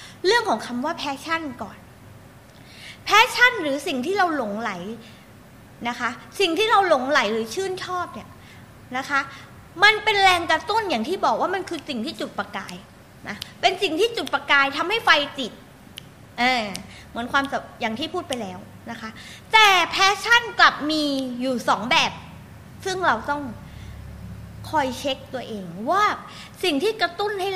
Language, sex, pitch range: Thai, female, 255-380 Hz